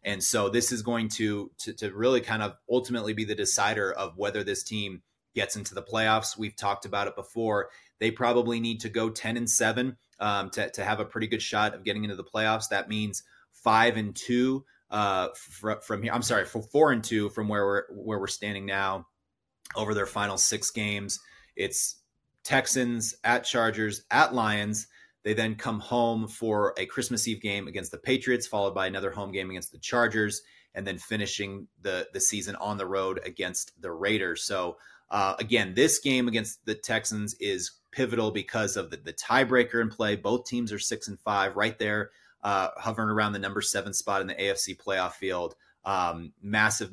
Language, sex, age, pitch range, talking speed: English, male, 30-49, 100-120 Hz, 195 wpm